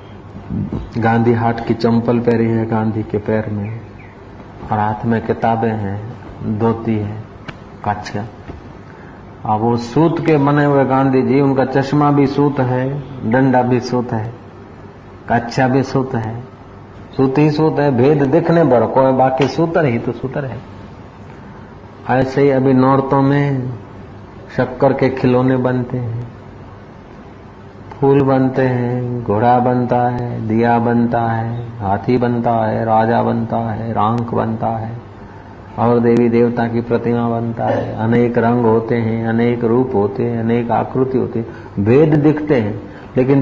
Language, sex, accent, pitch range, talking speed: Hindi, male, native, 110-130 Hz, 140 wpm